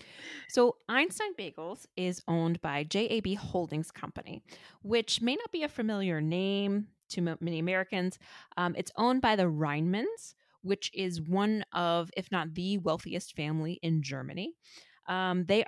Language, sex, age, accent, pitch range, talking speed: English, female, 20-39, American, 170-225 Hz, 150 wpm